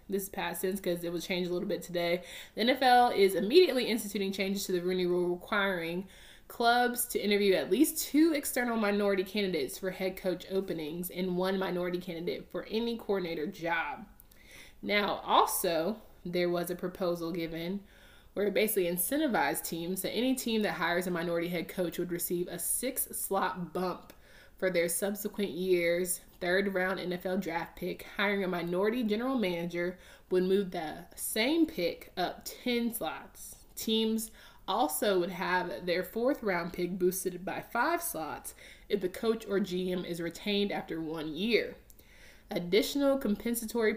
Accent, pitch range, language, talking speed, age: American, 175-215 Hz, English, 155 wpm, 20-39